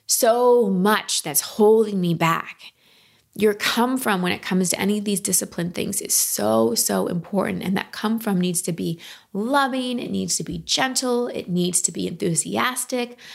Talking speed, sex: 180 wpm, female